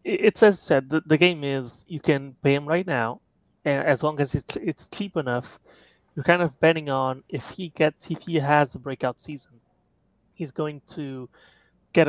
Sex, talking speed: male, 195 wpm